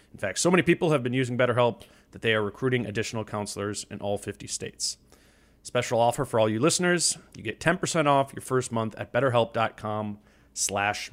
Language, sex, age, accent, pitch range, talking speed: English, male, 30-49, American, 110-145 Hz, 190 wpm